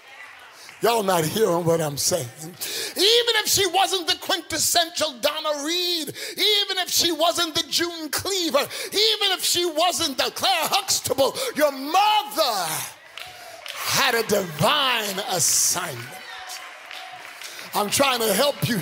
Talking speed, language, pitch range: 125 wpm, English, 290-390 Hz